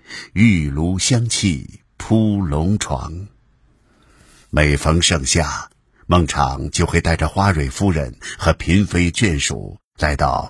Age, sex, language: 60-79, male, Chinese